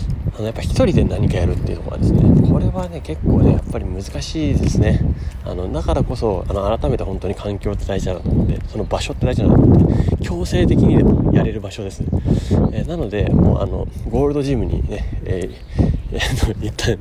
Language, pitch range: Japanese, 90-120 Hz